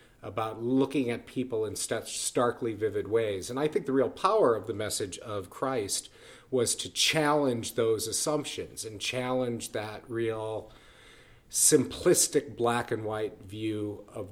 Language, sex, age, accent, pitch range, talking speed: English, male, 40-59, American, 105-125 Hz, 145 wpm